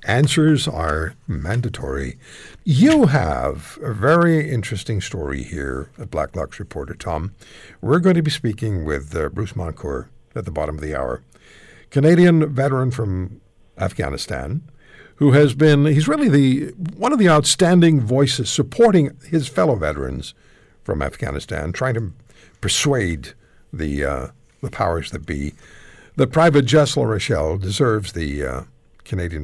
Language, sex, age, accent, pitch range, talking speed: English, male, 60-79, American, 90-145 Hz, 140 wpm